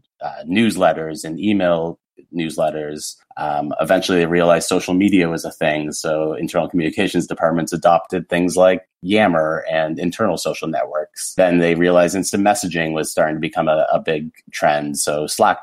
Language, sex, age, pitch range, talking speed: English, male, 30-49, 75-90 Hz, 155 wpm